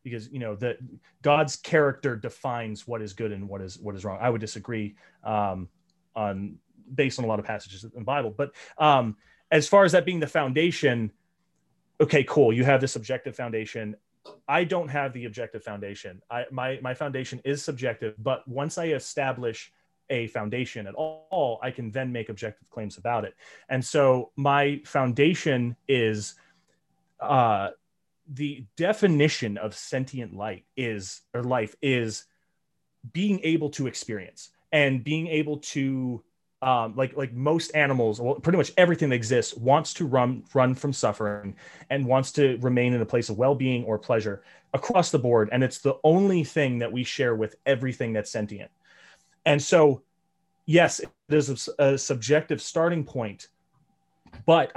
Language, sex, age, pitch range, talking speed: English, male, 30-49, 115-150 Hz, 165 wpm